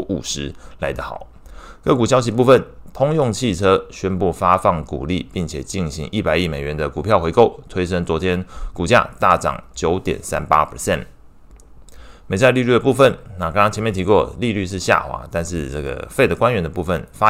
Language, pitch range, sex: Chinese, 80-105 Hz, male